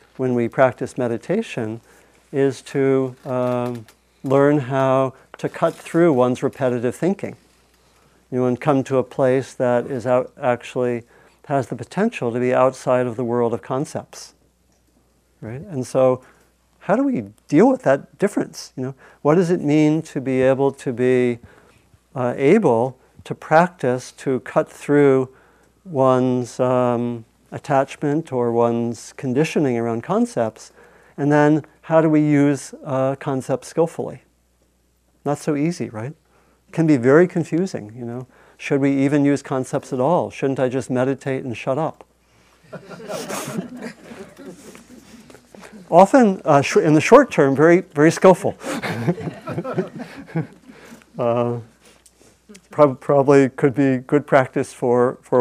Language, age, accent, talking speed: English, 50-69, American, 140 wpm